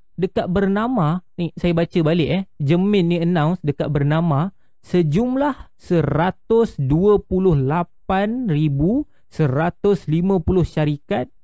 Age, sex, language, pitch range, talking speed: 30-49, male, Malay, 155-205 Hz, 80 wpm